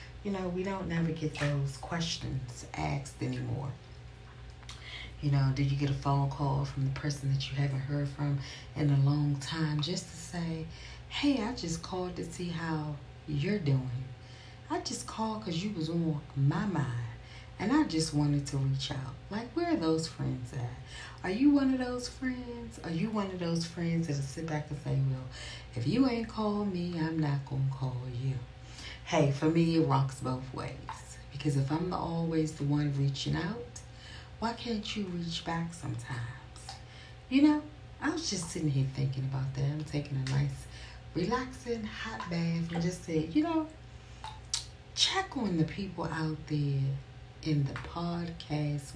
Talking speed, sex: 180 wpm, female